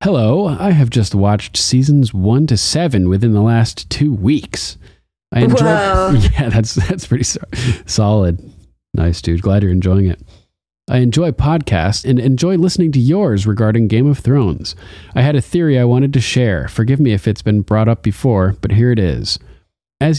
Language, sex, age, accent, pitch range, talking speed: English, male, 40-59, American, 95-130 Hz, 180 wpm